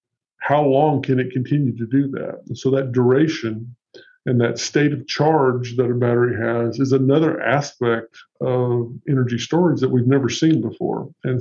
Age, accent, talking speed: 50-69, American, 175 wpm